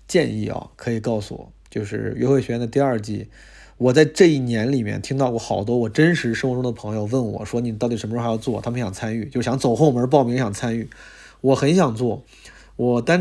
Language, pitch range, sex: Chinese, 115-135 Hz, male